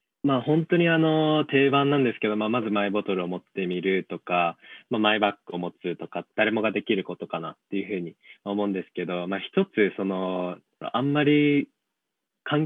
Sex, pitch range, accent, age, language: male, 95-135 Hz, native, 20-39, Japanese